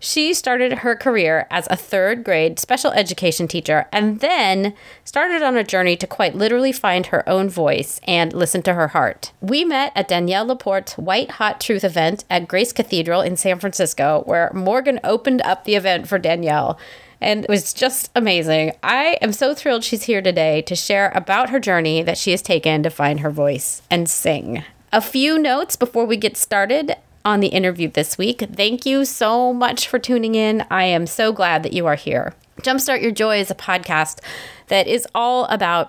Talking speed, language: 195 wpm, English